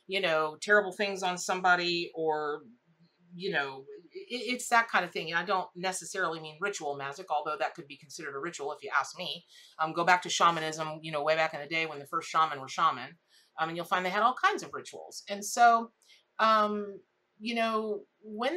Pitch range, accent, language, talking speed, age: 175-220 Hz, American, English, 215 wpm, 40-59